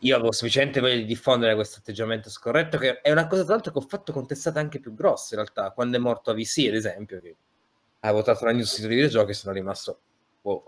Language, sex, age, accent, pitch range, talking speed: Italian, male, 20-39, native, 110-145 Hz, 220 wpm